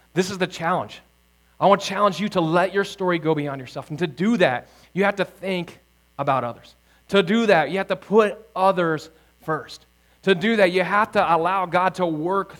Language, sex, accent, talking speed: English, male, American, 215 wpm